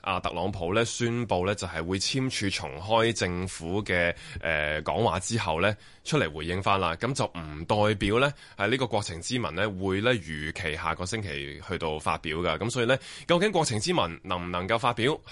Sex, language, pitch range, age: male, Chinese, 85-120 Hz, 20-39